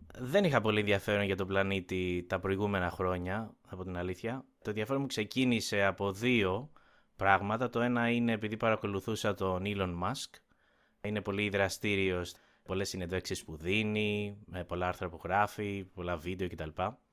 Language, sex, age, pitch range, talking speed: Greek, male, 20-39, 95-110 Hz, 155 wpm